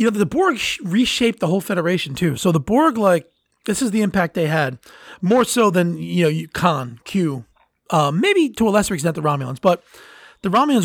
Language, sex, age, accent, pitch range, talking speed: English, male, 30-49, American, 160-205 Hz, 205 wpm